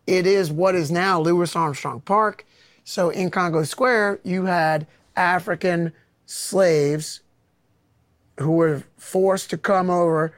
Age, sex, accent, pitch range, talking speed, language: 30-49, male, American, 160-190 Hz, 125 wpm, English